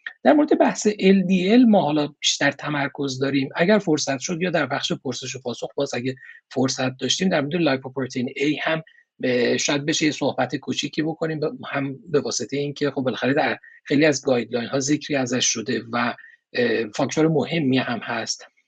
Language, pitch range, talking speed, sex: Persian, 140-190 Hz, 165 wpm, male